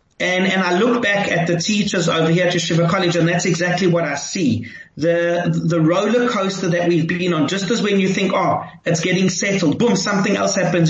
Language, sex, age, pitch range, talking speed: English, male, 30-49, 175-215 Hz, 220 wpm